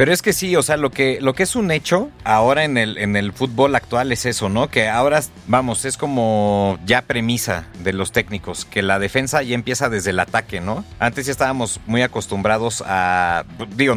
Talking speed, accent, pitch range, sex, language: 200 wpm, Mexican, 105-135 Hz, male, Spanish